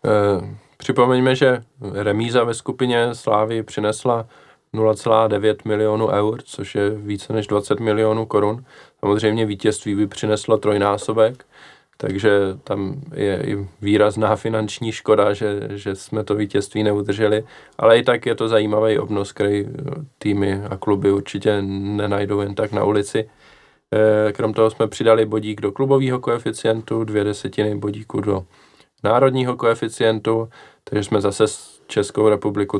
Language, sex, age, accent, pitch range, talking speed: Czech, male, 20-39, native, 105-115 Hz, 130 wpm